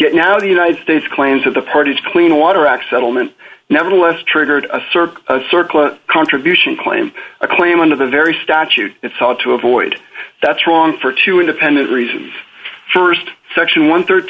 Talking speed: 155 wpm